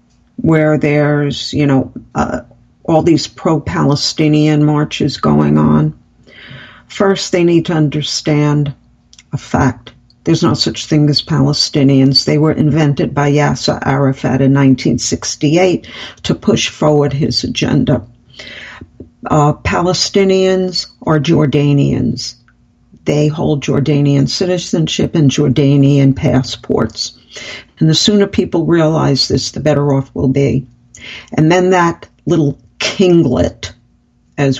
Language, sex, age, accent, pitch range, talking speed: English, female, 60-79, American, 130-160 Hz, 115 wpm